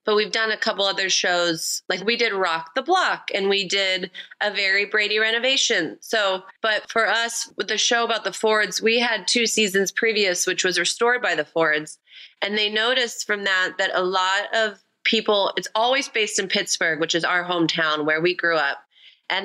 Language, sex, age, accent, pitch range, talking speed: English, female, 30-49, American, 180-220 Hz, 200 wpm